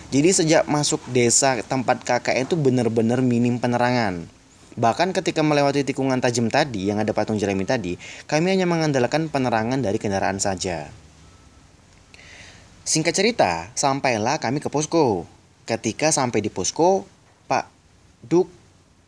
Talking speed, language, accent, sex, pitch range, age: 125 wpm, Indonesian, native, male, 95-145 Hz, 20-39